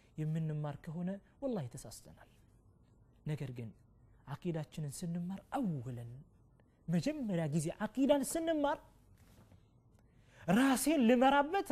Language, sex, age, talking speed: Amharic, male, 30-49, 75 wpm